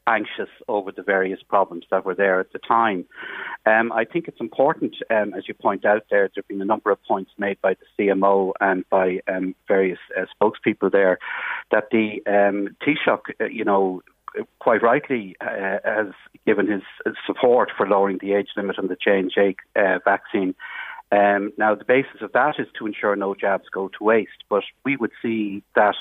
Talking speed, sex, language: 190 wpm, male, English